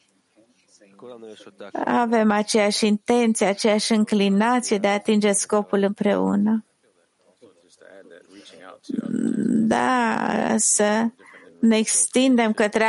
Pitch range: 200-235 Hz